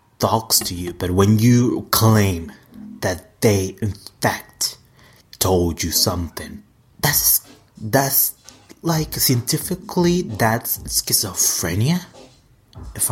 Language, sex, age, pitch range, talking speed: English, male, 30-49, 95-125 Hz, 95 wpm